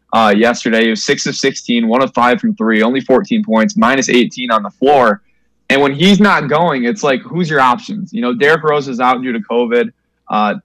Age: 20-39